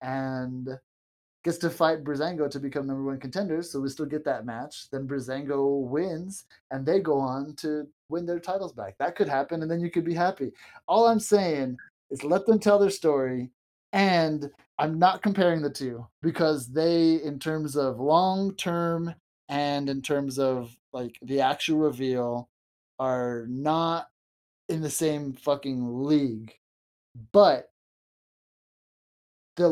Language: English